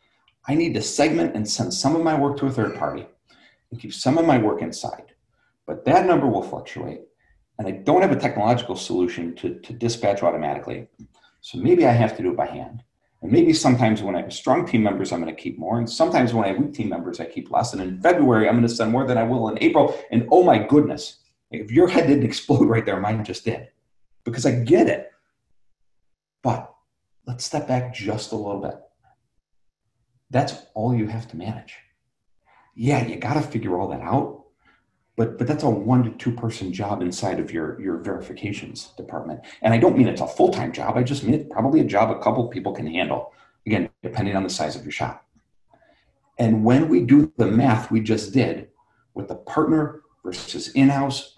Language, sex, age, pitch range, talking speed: English, male, 40-59, 110-135 Hz, 210 wpm